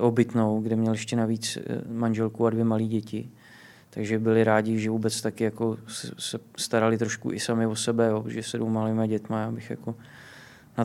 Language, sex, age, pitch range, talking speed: Czech, male, 20-39, 110-120 Hz, 175 wpm